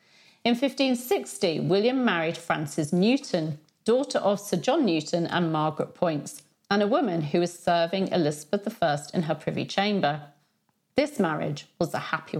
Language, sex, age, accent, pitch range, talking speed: English, female, 40-59, British, 160-215 Hz, 150 wpm